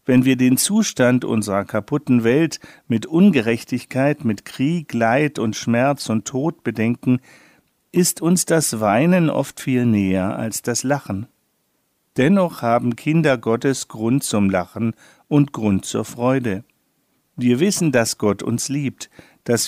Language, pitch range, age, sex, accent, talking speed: German, 110-145 Hz, 50-69, male, German, 135 wpm